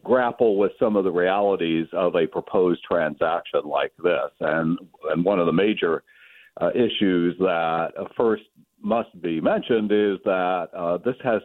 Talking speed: 155 wpm